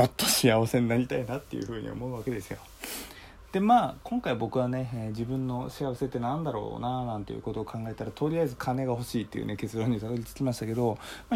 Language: Japanese